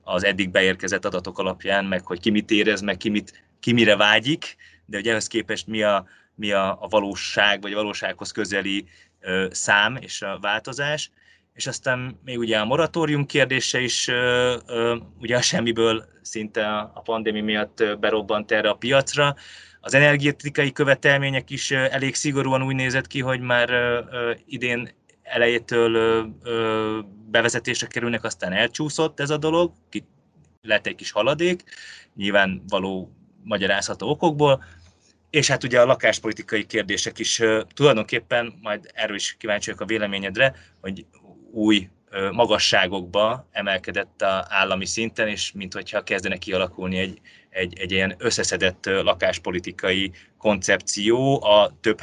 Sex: male